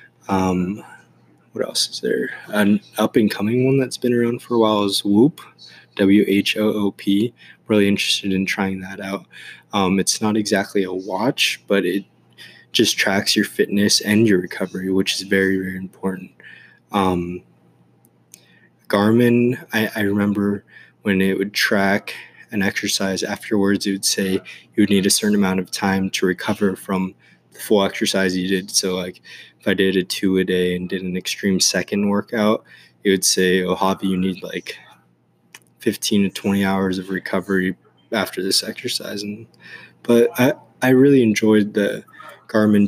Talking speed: 160 wpm